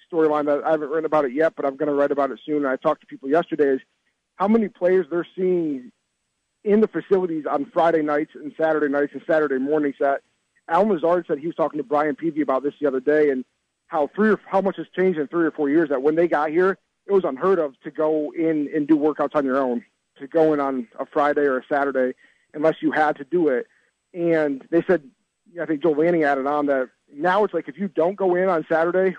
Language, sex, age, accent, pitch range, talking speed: English, male, 40-59, American, 145-175 Hz, 245 wpm